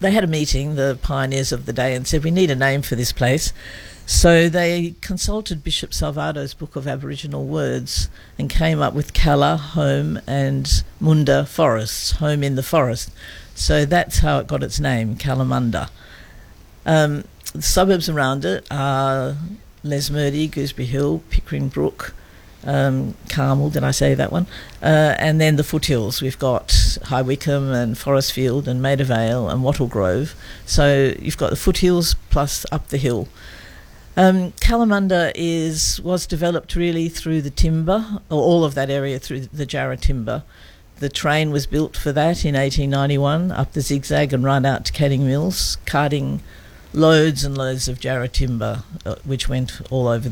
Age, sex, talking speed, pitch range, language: 50-69, female, 165 wpm, 125-155 Hz, English